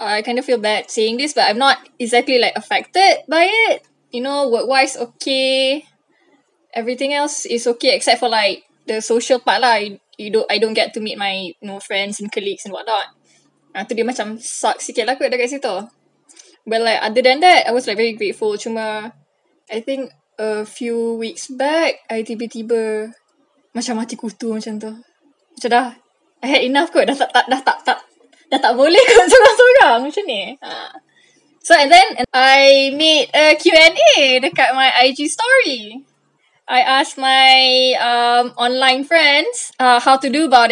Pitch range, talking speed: 230-285 Hz, 185 wpm